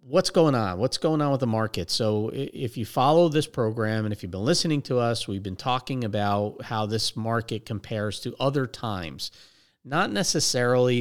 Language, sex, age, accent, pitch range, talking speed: English, male, 40-59, American, 105-125 Hz, 190 wpm